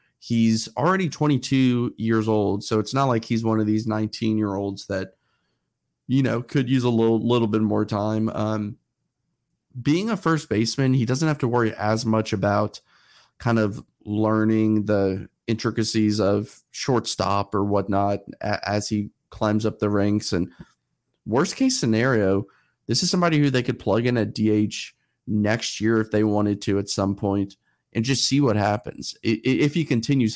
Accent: American